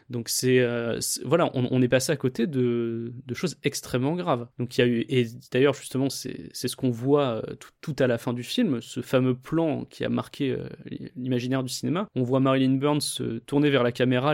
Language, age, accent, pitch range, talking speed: French, 20-39, French, 120-140 Hz, 220 wpm